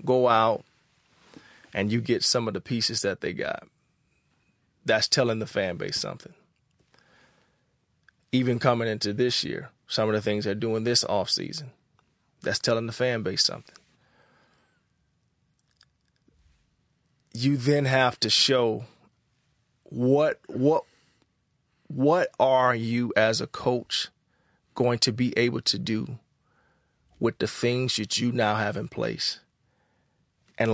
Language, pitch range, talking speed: English, 115-140 Hz, 130 wpm